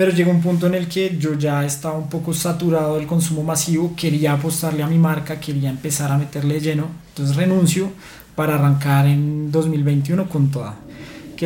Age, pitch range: 20-39, 150-170 Hz